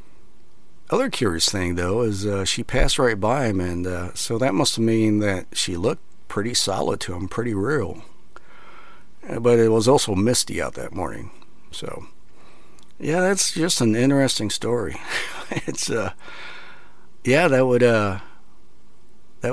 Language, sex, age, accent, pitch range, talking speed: English, male, 50-69, American, 90-115 Hz, 155 wpm